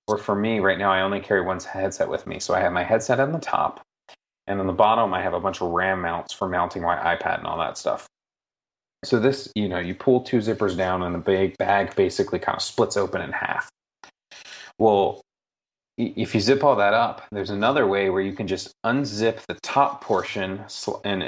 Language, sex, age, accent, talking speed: English, male, 30-49, American, 220 wpm